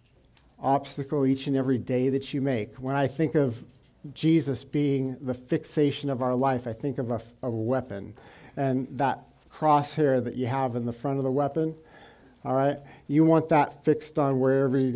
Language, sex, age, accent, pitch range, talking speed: English, male, 50-69, American, 125-150 Hz, 185 wpm